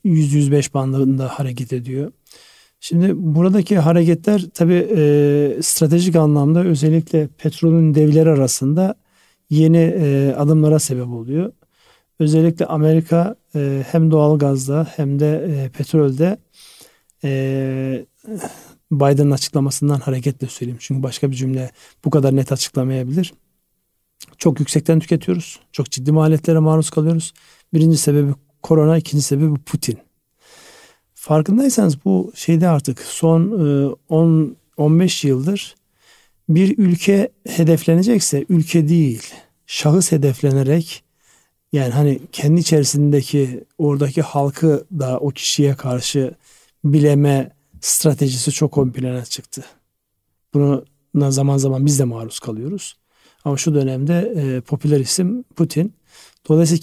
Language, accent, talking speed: Turkish, native, 105 wpm